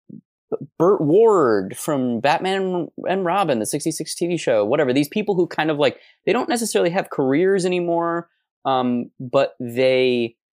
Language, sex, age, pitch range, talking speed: English, male, 20-39, 125-175 Hz, 150 wpm